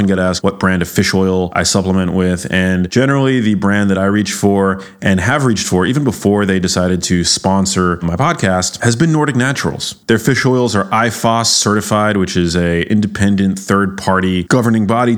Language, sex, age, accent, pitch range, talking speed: English, male, 20-39, American, 90-115 Hz, 190 wpm